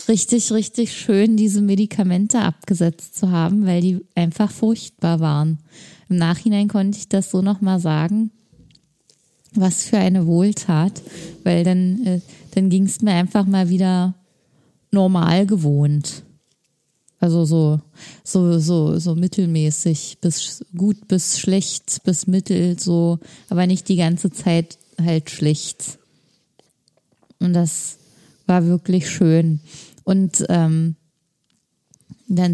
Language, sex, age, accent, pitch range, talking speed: German, female, 20-39, German, 165-195 Hz, 120 wpm